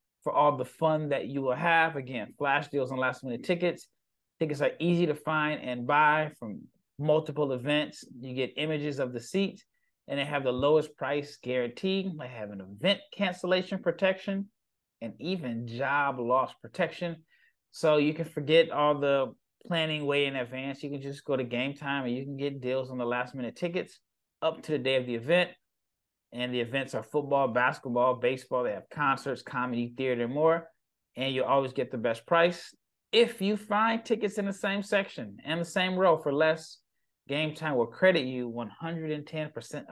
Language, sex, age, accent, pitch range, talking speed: English, male, 30-49, American, 125-165 Hz, 185 wpm